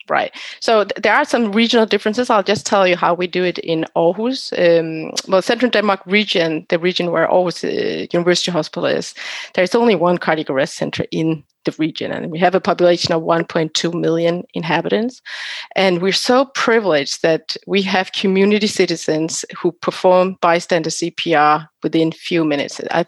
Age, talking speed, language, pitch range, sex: 30-49, 175 wpm, English, 165-195 Hz, female